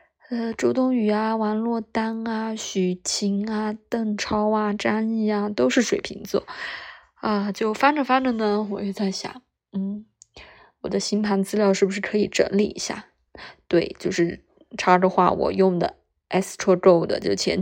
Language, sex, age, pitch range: Chinese, female, 20-39, 195-225 Hz